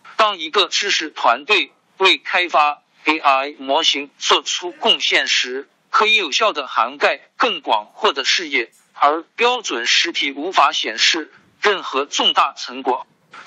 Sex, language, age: male, Chinese, 50-69